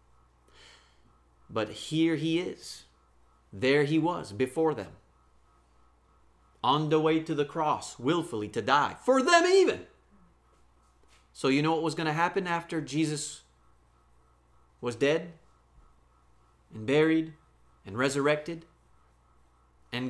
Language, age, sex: English, 30-49, male